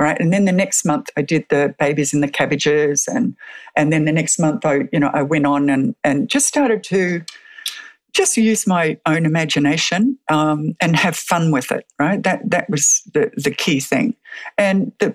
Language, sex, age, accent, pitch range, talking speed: English, female, 60-79, Australian, 155-220 Hz, 200 wpm